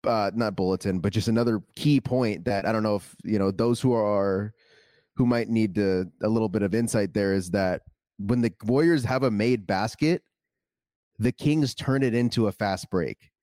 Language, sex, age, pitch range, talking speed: English, male, 20-39, 110-135 Hz, 195 wpm